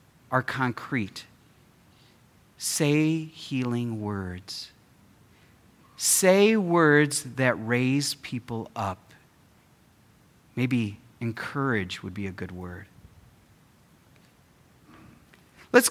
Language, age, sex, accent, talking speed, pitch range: English, 40-59, male, American, 70 wpm, 125-170 Hz